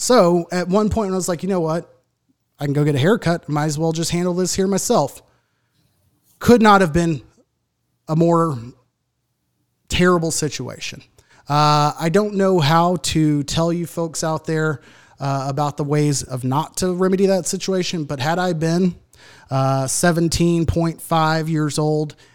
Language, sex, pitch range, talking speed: English, male, 135-170 Hz, 165 wpm